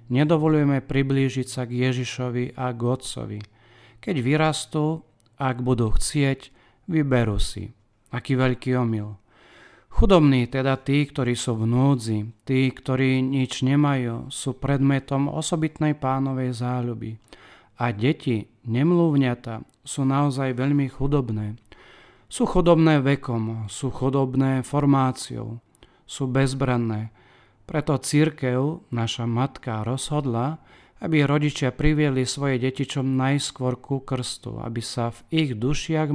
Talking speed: 110 wpm